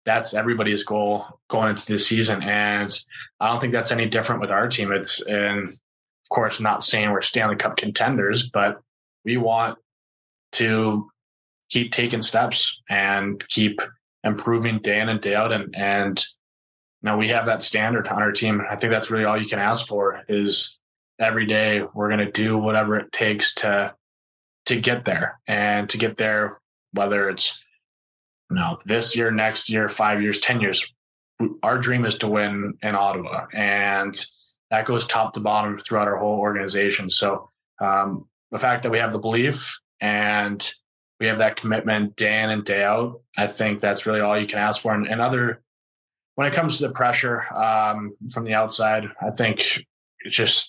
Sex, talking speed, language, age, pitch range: male, 180 wpm, English, 20-39, 100-115 Hz